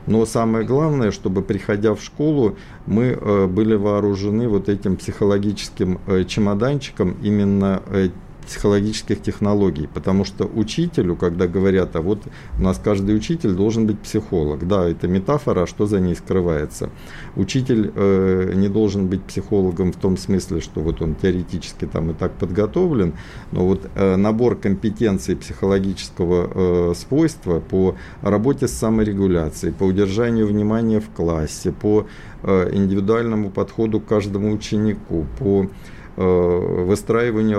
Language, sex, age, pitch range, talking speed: Russian, male, 50-69, 90-105 Hz, 135 wpm